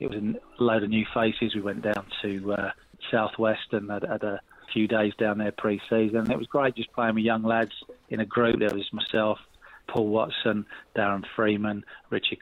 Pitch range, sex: 100-115 Hz, male